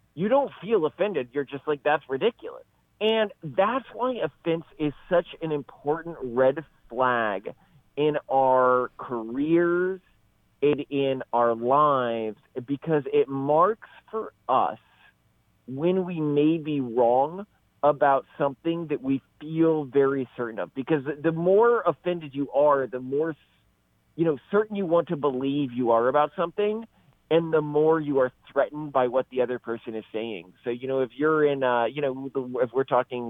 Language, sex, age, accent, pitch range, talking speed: English, male, 40-59, American, 125-160 Hz, 160 wpm